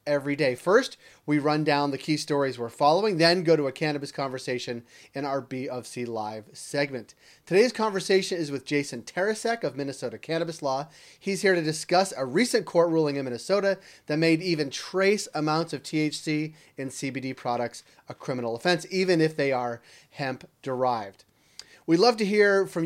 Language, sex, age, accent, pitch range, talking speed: English, male, 30-49, American, 130-180 Hz, 175 wpm